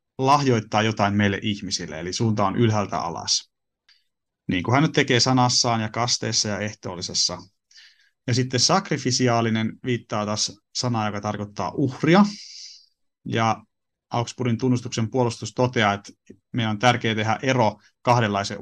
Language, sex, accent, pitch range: Finnish, male, native, 105-125 Hz